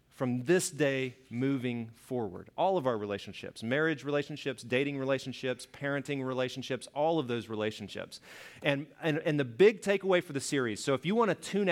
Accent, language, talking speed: American, English, 175 wpm